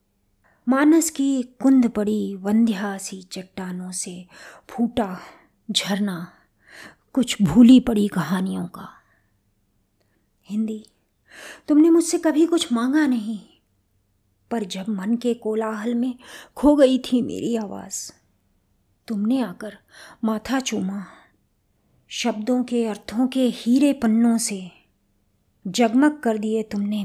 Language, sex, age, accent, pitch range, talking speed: Hindi, female, 20-39, native, 185-245 Hz, 105 wpm